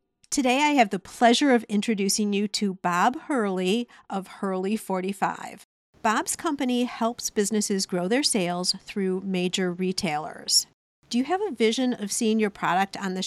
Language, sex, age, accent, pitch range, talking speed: English, female, 50-69, American, 185-255 Hz, 160 wpm